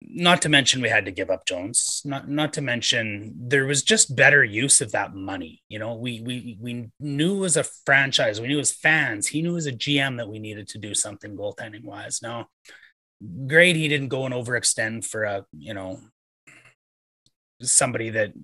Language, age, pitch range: English, 30-49, 105-145 Hz